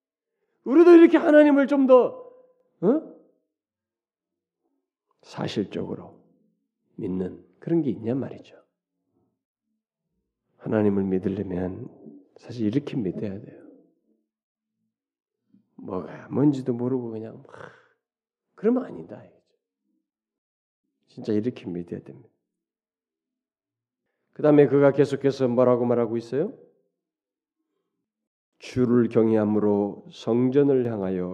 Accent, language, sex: native, Korean, male